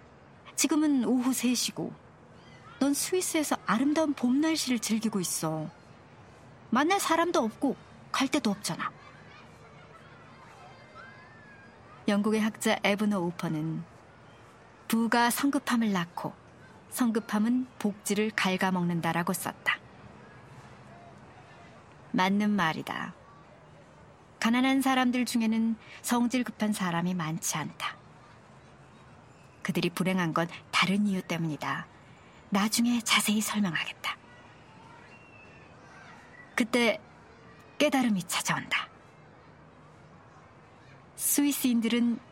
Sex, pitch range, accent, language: male, 175-245 Hz, native, Korean